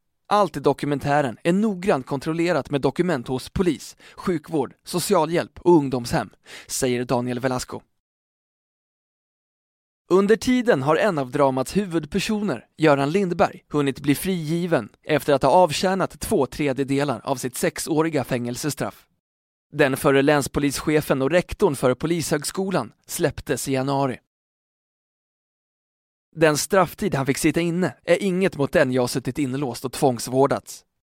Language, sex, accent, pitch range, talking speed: Swedish, male, native, 130-165 Hz, 125 wpm